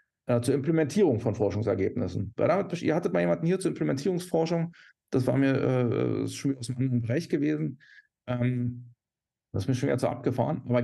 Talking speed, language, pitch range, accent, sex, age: 160 wpm, German, 120-175 Hz, German, male, 40-59